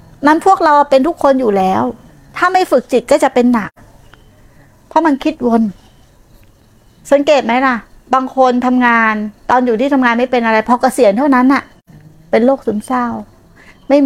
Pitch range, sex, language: 205-270 Hz, female, Thai